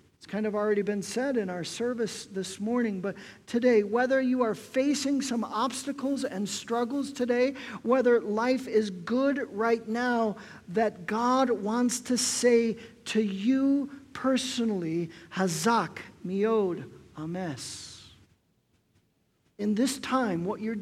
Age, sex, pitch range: 50-69, male, 185-250 Hz